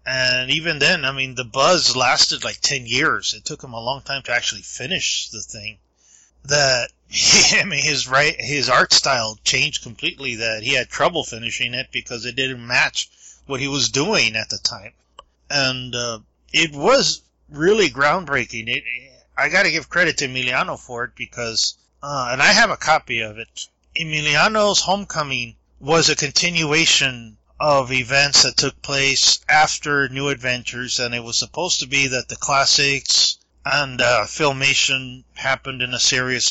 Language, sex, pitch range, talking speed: English, male, 120-145 Hz, 170 wpm